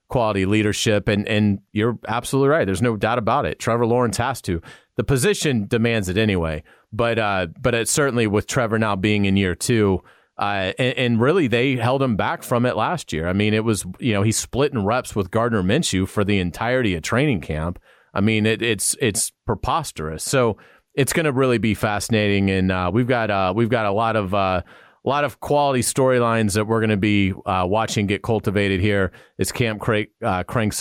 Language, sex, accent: English, male, American